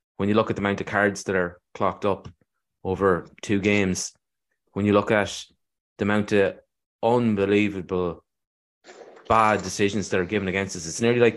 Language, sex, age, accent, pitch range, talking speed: English, male, 20-39, Irish, 95-115 Hz, 175 wpm